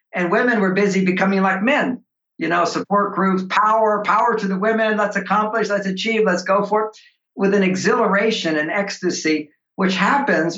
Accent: American